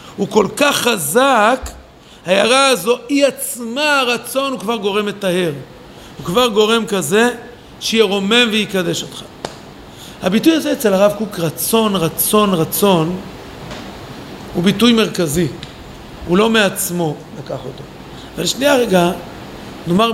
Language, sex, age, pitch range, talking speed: Hebrew, male, 50-69, 160-220 Hz, 120 wpm